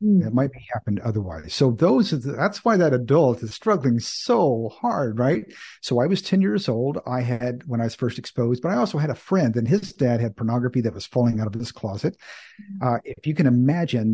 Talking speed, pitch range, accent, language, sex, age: 220 wpm, 115-145 Hz, American, English, male, 50-69